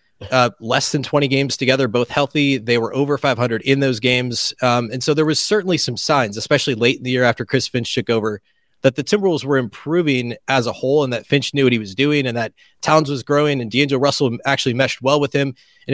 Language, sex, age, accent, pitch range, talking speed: English, male, 30-49, American, 120-145 Hz, 240 wpm